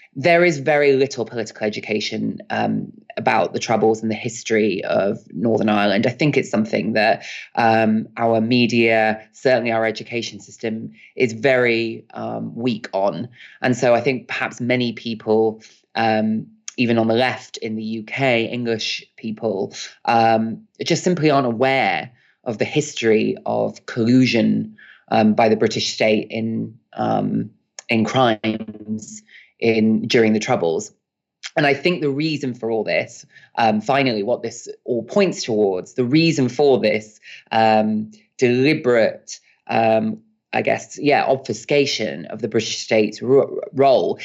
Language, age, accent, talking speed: English, 20-39, British, 140 wpm